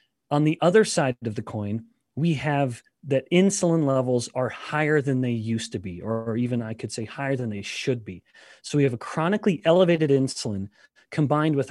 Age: 30-49